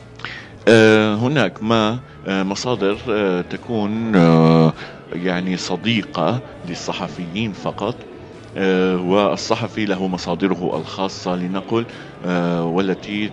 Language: Arabic